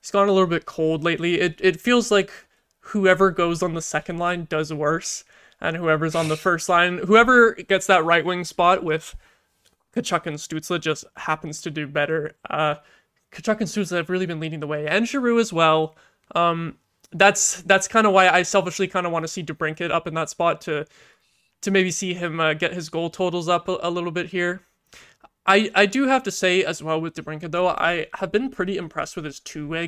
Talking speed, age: 215 wpm, 20-39